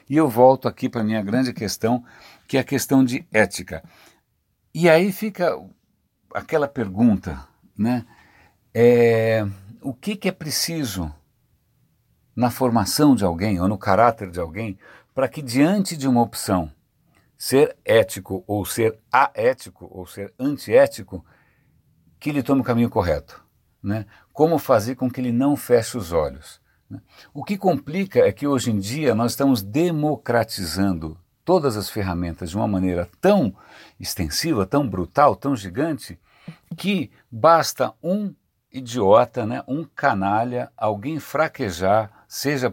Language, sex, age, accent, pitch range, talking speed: Portuguese, male, 60-79, Brazilian, 100-140 Hz, 140 wpm